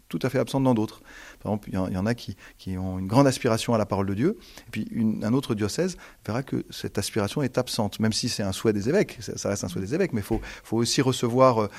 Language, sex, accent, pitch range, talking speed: French, male, French, 95-120 Hz, 275 wpm